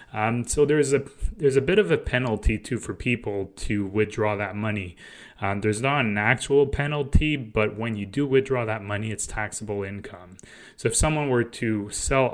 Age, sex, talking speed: 20-39, male, 190 wpm